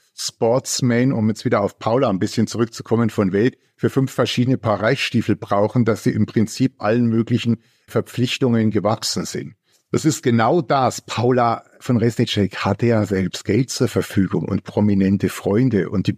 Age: 50-69